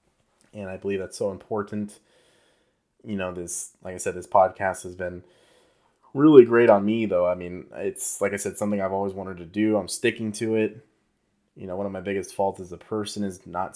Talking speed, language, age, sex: 215 wpm, English, 20-39, male